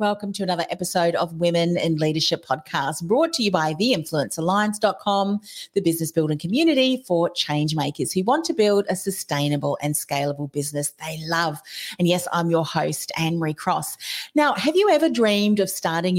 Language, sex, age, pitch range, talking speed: English, female, 40-59, 160-210 Hz, 170 wpm